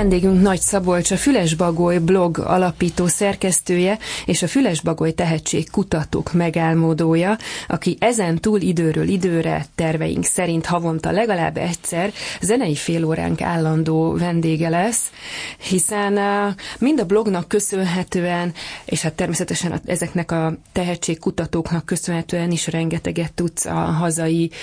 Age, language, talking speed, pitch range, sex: 30-49, Hungarian, 105 wpm, 160-180 Hz, female